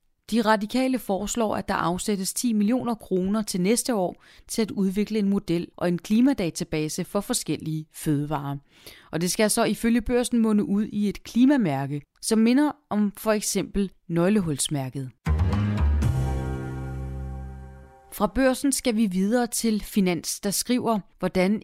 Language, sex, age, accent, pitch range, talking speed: Danish, female, 30-49, native, 165-225 Hz, 140 wpm